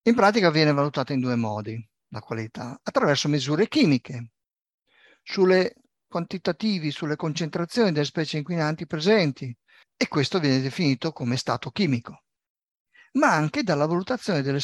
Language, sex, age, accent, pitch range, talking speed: Italian, male, 50-69, native, 125-180 Hz, 130 wpm